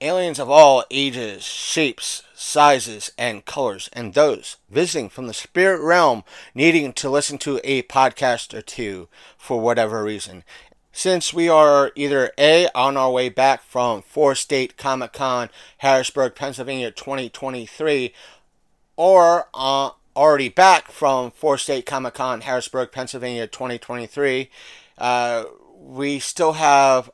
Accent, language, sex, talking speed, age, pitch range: American, English, male, 130 wpm, 40-59, 120-140 Hz